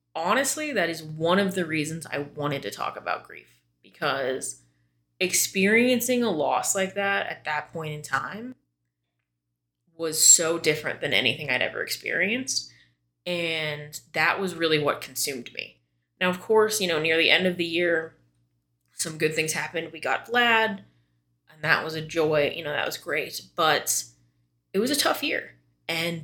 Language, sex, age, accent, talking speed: English, female, 20-39, American, 170 wpm